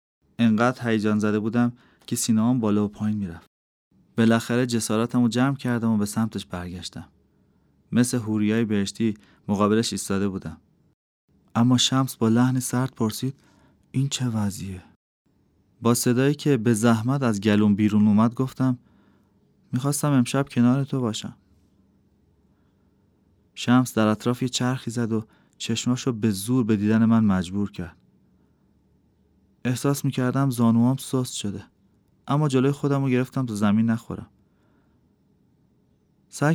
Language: Persian